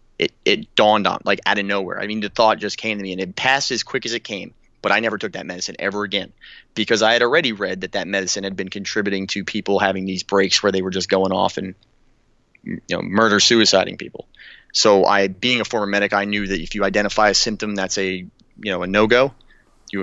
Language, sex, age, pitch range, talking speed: English, male, 30-49, 100-115 Hz, 245 wpm